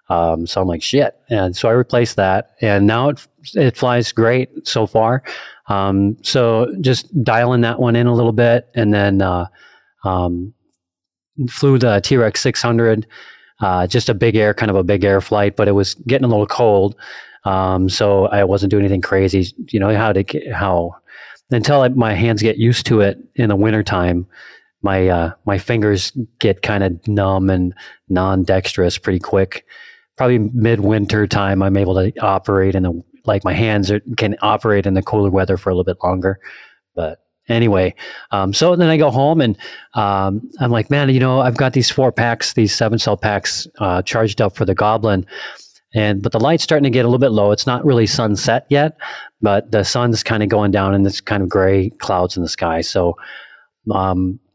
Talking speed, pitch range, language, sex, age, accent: 195 wpm, 95-120 Hz, English, male, 30-49, American